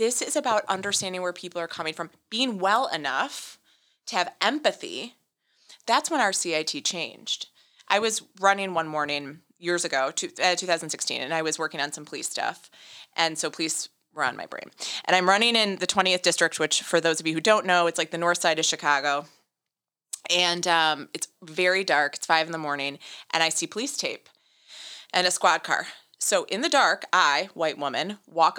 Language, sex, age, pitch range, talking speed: English, female, 20-39, 160-200 Hz, 195 wpm